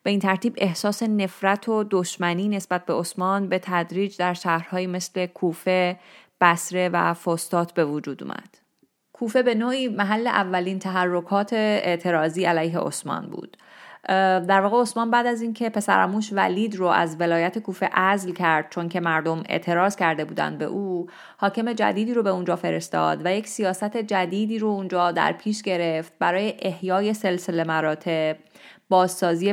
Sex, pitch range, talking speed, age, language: female, 175-210 Hz, 150 wpm, 30-49, Persian